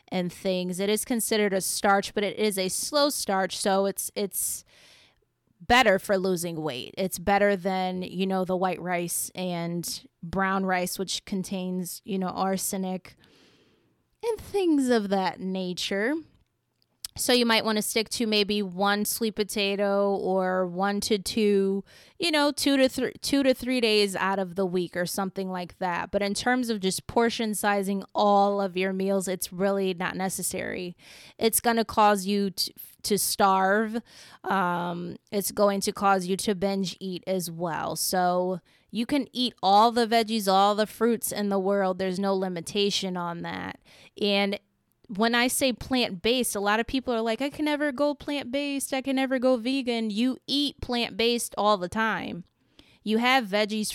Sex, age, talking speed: female, 20-39, 170 wpm